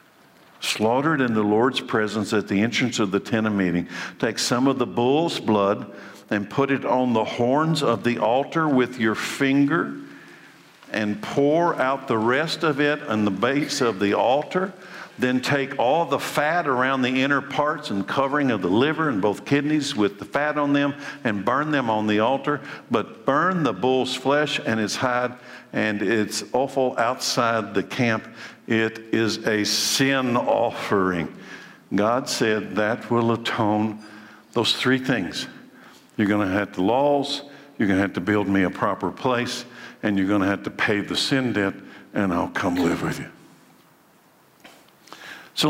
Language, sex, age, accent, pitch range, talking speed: English, male, 50-69, American, 105-145 Hz, 175 wpm